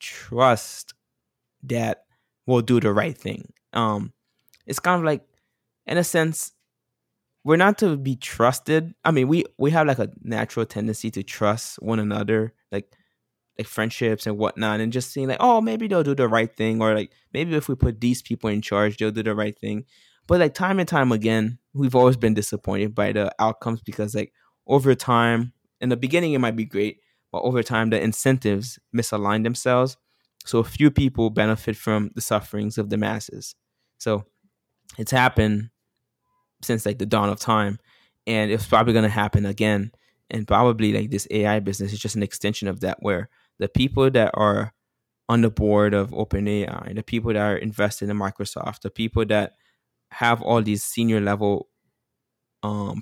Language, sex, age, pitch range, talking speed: English, male, 10-29, 105-125 Hz, 180 wpm